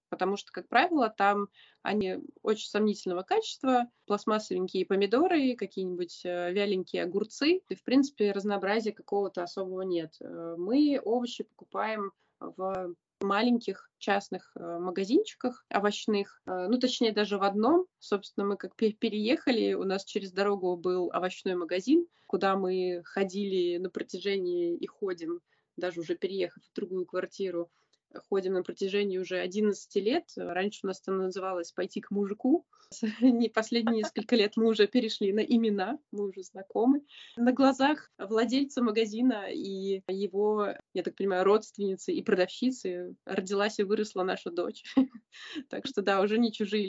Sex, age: female, 20-39